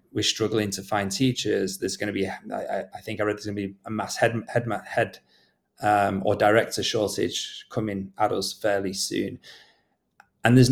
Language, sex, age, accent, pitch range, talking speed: English, male, 30-49, British, 105-125 Hz, 190 wpm